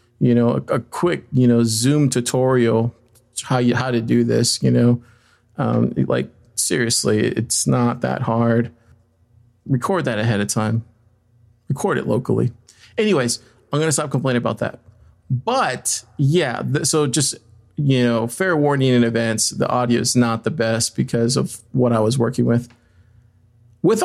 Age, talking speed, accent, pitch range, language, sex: 40-59, 155 wpm, American, 115-140 Hz, English, male